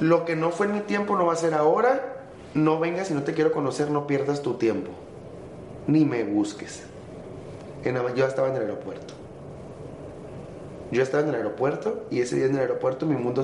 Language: English